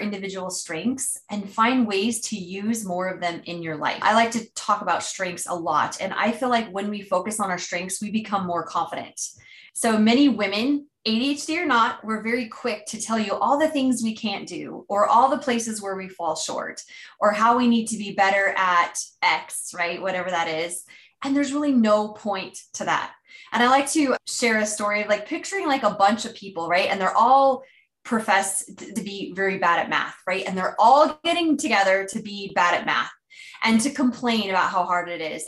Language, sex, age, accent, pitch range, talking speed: English, female, 20-39, American, 185-240 Hz, 215 wpm